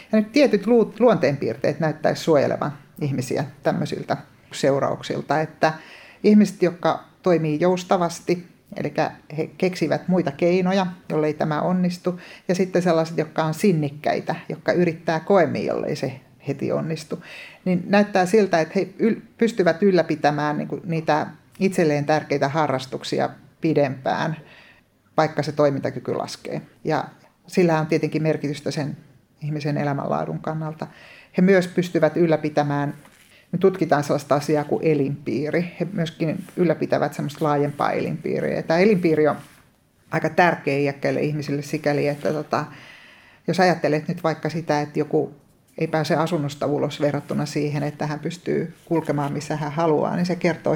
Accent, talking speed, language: native, 130 wpm, Finnish